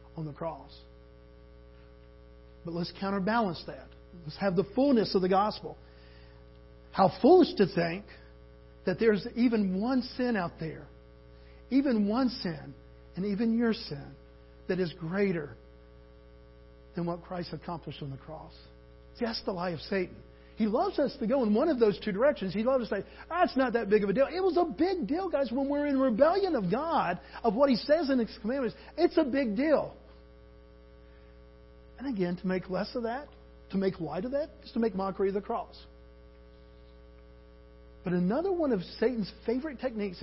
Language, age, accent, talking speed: English, 50-69, American, 180 wpm